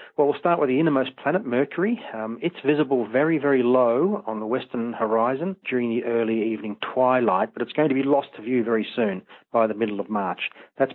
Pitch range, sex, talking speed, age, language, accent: 110-140 Hz, male, 215 wpm, 40-59, English, Australian